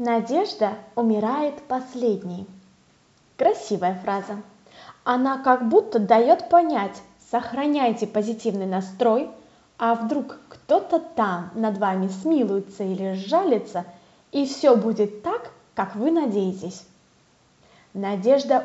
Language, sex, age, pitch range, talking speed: Russian, female, 20-39, 210-280 Hz, 95 wpm